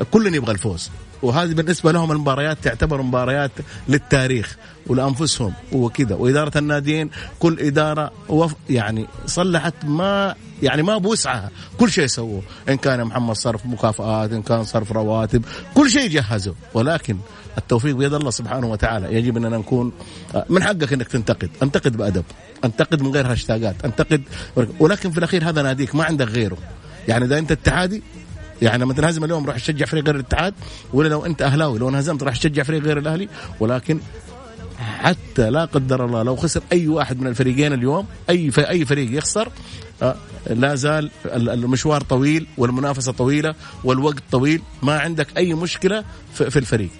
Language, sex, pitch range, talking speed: Arabic, male, 110-155 Hz, 155 wpm